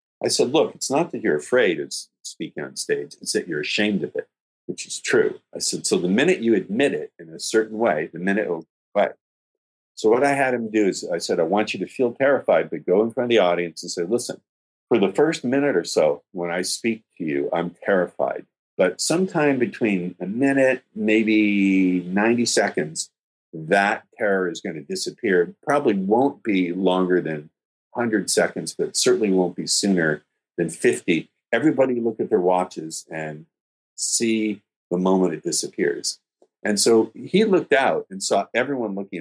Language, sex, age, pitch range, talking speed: English, male, 50-69, 85-120 Hz, 190 wpm